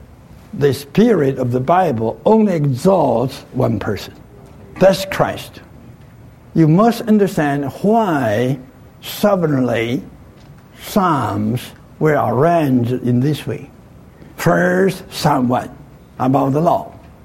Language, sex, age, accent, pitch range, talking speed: English, male, 60-79, American, 125-170 Hz, 95 wpm